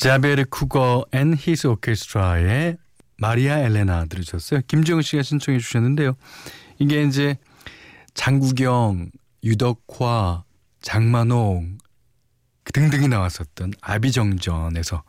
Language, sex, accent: Korean, male, native